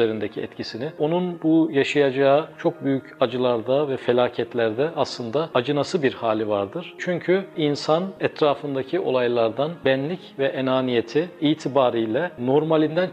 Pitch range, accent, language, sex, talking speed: 125-165 Hz, native, Turkish, male, 105 wpm